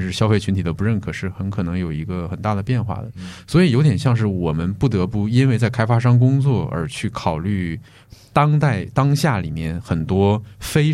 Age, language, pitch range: 20-39, Chinese, 95-125 Hz